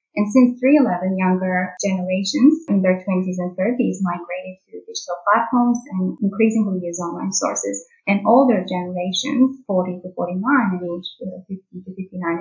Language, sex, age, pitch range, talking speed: English, female, 30-49, 180-240 Hz, 145 wpm